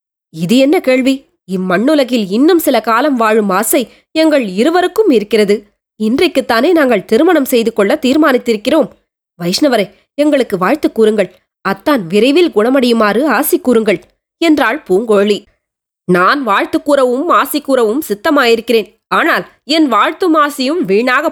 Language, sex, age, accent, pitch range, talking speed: Tamil, female, 20-39, native, 225-300 Hz, 115 wpm